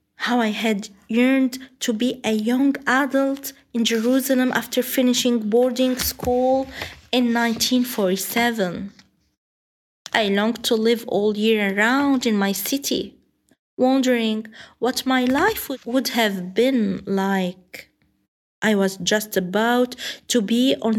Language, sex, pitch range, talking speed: Arabic, female, 215-265 Hz, 120 wpm